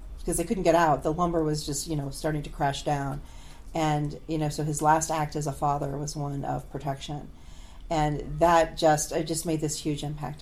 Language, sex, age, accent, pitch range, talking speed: English, female, 40-59, American, 140-175 Hz, 220 wpm